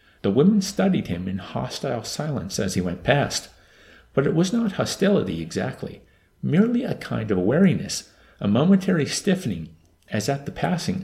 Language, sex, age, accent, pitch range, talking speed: English, male, 50-69, American, 90-155 Hz, 160 wpm